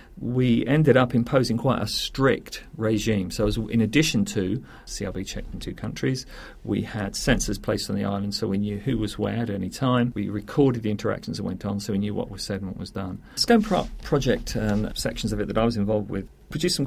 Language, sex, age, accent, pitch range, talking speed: English, male, 40-59, British, 105-125 Hz, 230 wpm